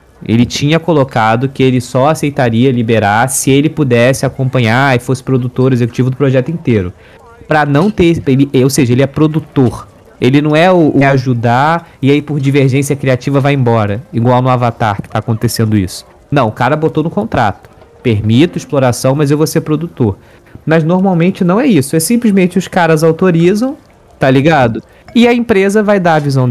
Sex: male